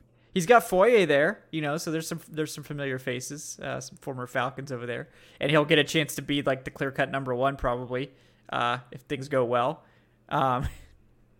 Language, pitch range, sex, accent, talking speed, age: English, 130-160 Hz, male, American, 200 wpm, 20-39